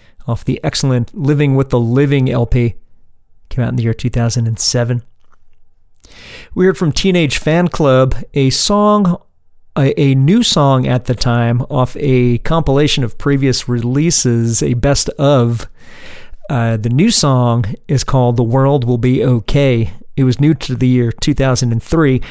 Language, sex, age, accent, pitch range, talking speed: English, male, 40-59, American, 120-140 Hz, 150 wpm